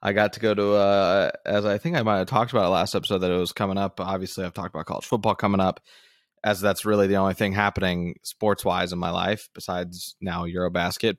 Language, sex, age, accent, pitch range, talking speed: English, male, 20-39, American, 90-105 Hz, 235 wpm